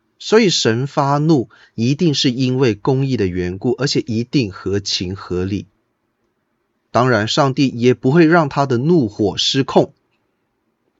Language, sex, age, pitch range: Chinese, male, 20-39, 110-145 Hz